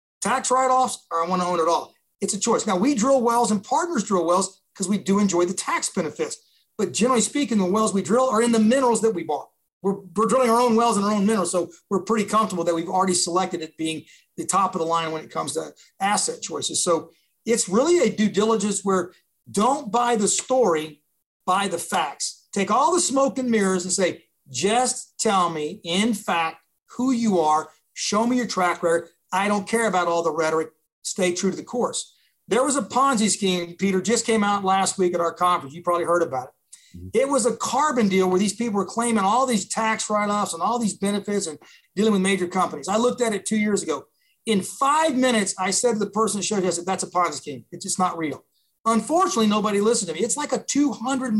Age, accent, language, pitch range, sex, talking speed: 40-59, American, English, 180-230 Hz, male, 230 wpm